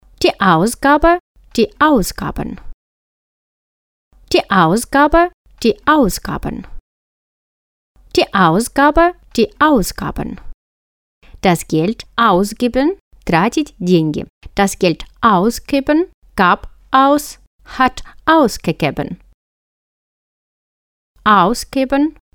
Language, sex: English, female